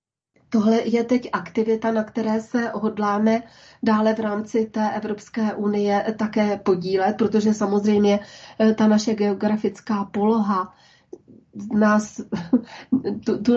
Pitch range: 200-225 Hz